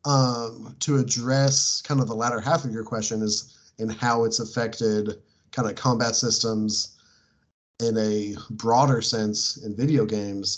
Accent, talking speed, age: American, 155 wpm, 30-49